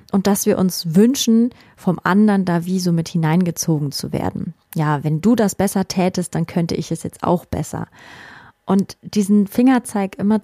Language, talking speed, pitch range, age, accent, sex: German, 180 wpm, 175-210 Hz, 30-49, German, female